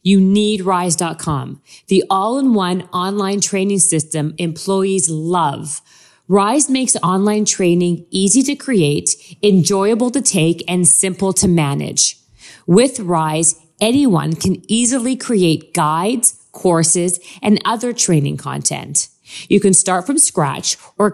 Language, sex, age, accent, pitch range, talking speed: English, female, 40-59, American, 165-210 Hz, 120 wpm